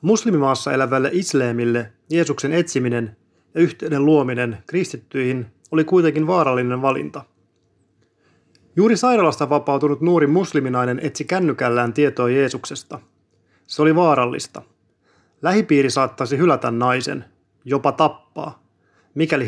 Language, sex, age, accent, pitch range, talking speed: Finnish, male, 30-49, native, 120-155 Hz, 100 wpm